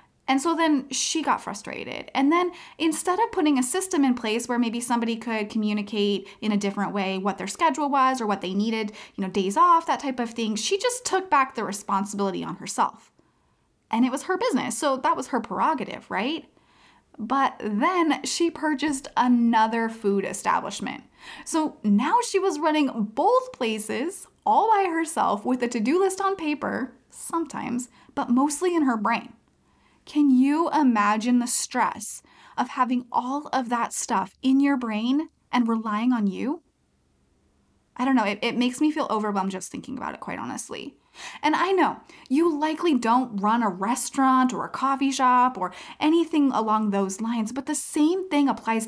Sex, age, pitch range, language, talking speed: female, 20-39, 215-305 Hz, English, 175 wpm